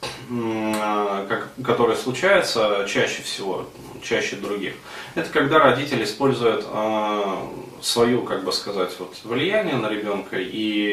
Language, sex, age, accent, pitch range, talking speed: Russian, male, 20-39, native, 105-125 Hz, 100 wpm